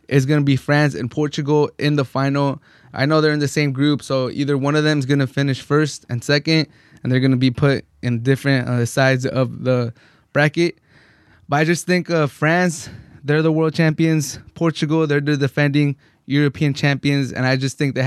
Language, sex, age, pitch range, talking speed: English, male, 20-39, 125-150 Hz, 210 wpm